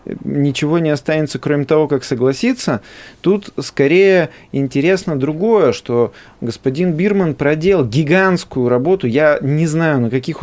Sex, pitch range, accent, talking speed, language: male, 125-165 Hz, native, 125 wpm, Russian